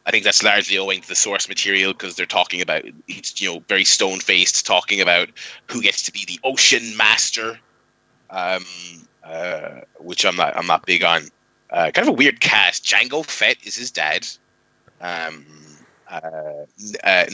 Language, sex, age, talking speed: English, male, 20-39, 175 wpm